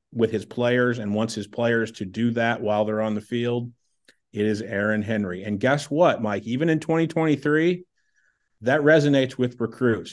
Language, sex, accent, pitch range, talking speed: English, male, American, 100-120 Hz, 180 wpm